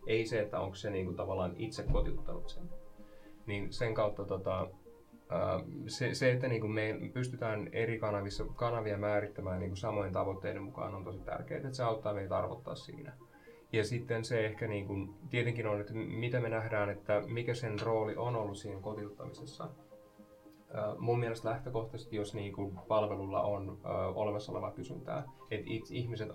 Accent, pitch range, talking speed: native, 100-115 Hz, 160 wpm